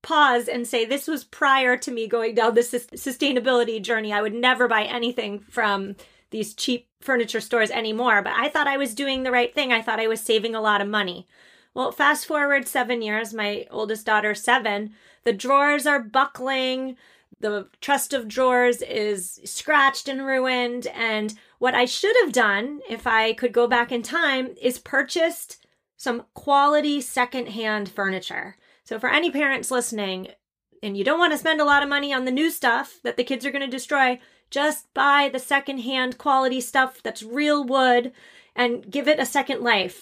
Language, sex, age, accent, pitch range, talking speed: English, female, 30-49, American, 230-275 Hz, 185 wpm